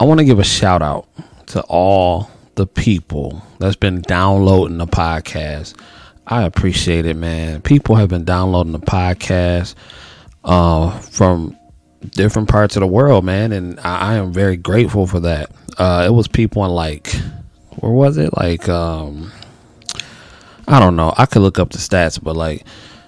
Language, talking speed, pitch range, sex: English, 160 wpm, 90-115 Hz, male